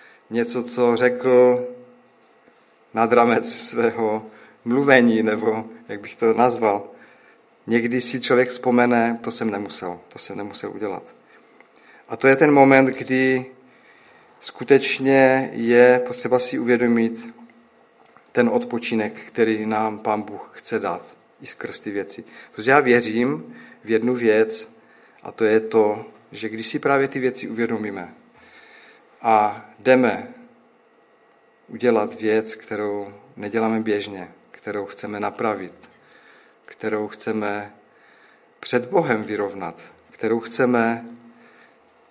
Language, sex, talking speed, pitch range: Czech, male, 115 wpm, 110-125 Hz